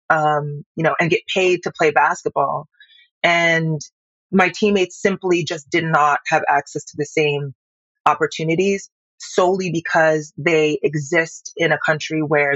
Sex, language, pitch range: female, English, 155-195 Hz